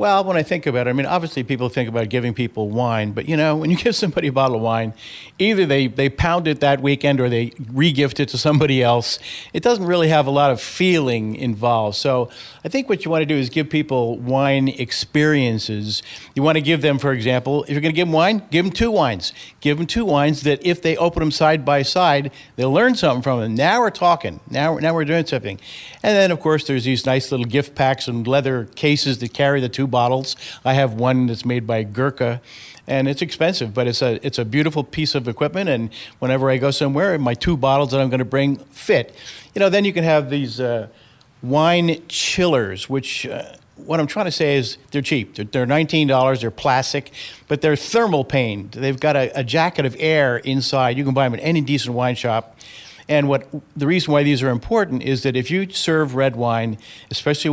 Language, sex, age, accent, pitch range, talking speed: English, male, 50-69, American, 125-155 Hz, 220 wpm